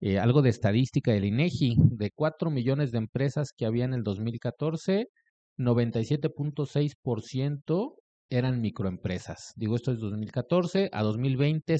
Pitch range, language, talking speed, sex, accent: 110-145 Hz, Spanish, 125 wpm, male, Mexican